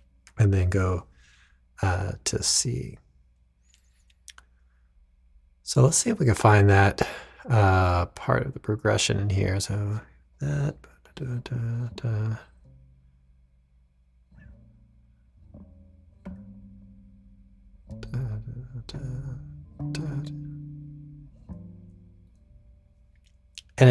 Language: English